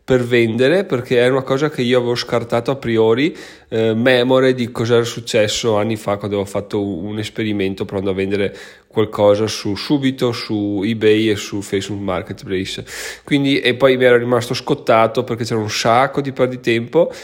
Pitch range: 105-125 Hz